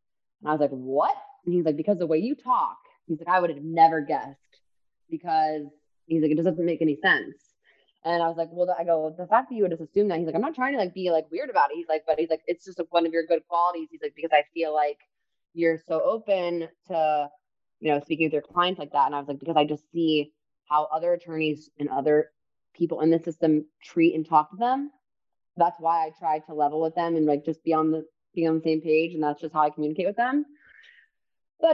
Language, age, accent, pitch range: English, 20-39, American, 155-190 Hz